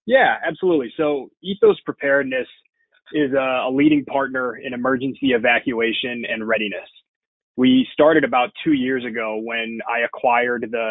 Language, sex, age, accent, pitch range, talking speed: English, male, 20-39, American, 115-140 Hz, 140 wpm